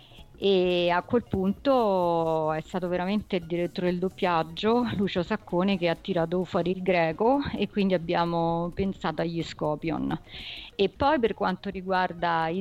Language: Italian